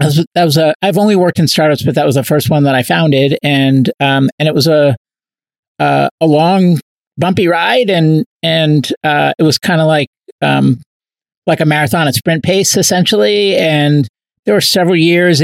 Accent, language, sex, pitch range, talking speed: American, English, male, 145-180 Hz, 190 wpm